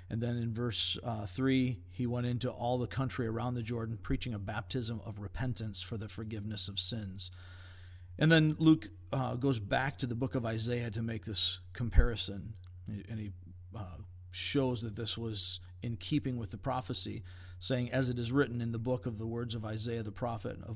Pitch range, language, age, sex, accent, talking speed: 95-120 Hz, English, 40-59, male, American, 195 wpm